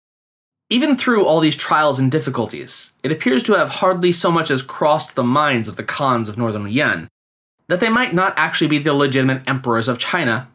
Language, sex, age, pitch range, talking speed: English, male, 20-39, 120-180 Hz, 200 wpm